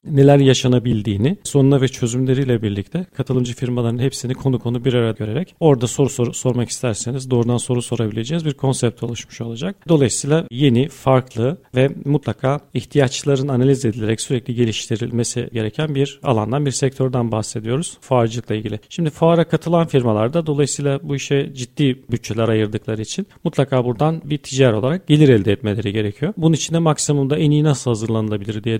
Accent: native